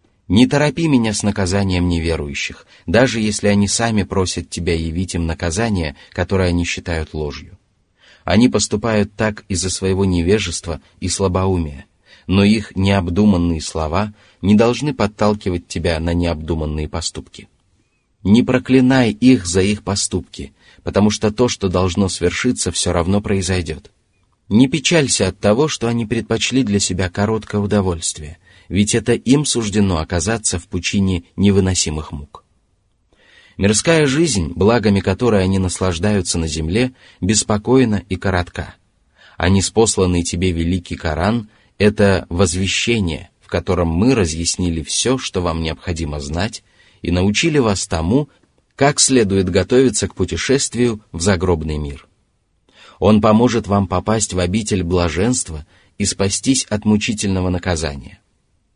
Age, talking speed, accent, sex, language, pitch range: 30-49, 125 wpm, native, male, Russian, 90-110 Hz